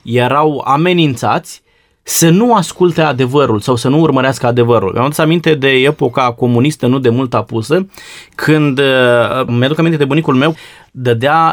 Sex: male